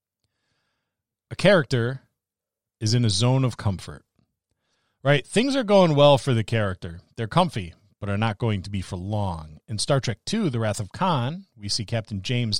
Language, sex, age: English, male, 40-59